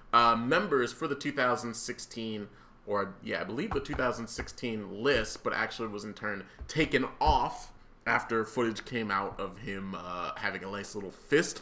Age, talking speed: 30-49, 160 wpm